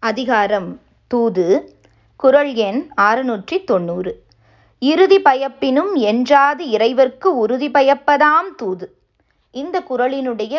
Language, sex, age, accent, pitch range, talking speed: Tamil, female, 20-39, native, 210-290 Hz, 85 wpm